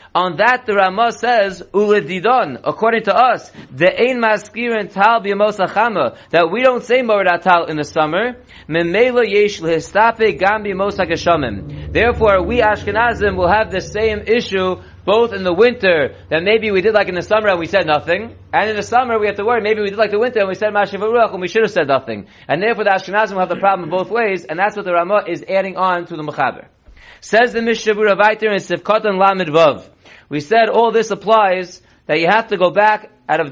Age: 30-49